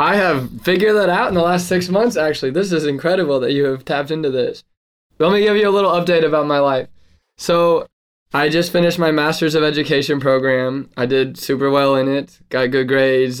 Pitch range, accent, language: 125-145 Hz, American, English